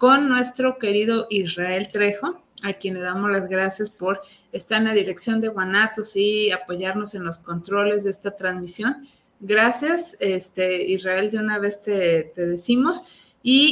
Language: Spanish